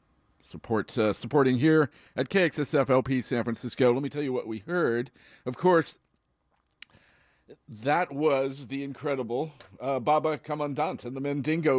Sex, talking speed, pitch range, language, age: male, 135 wpm, 110-145 Hz, English, 40-59